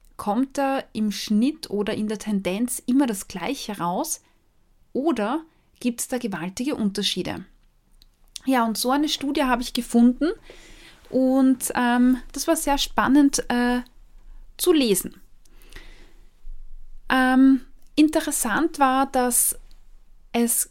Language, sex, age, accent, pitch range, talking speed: German, female, 20-39, German, 210-265 Hz, 115 wpm